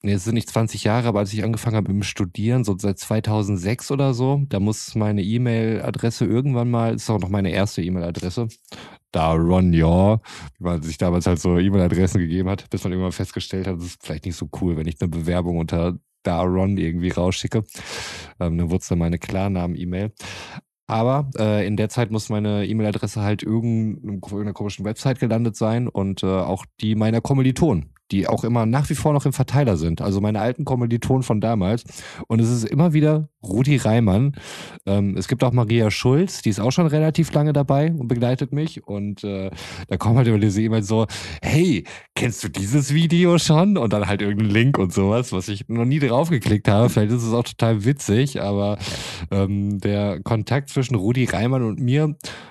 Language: German